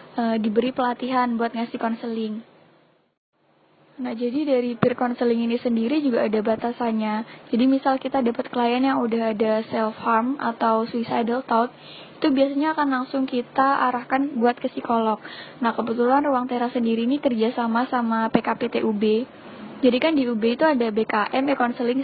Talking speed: 150 wpm